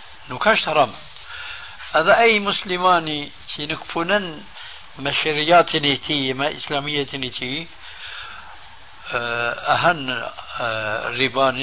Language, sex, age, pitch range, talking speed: Arabic, male, 60-79, 130-160 Hz, 65 wpm